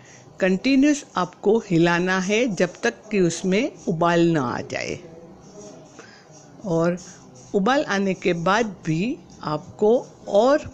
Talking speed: 110 wpm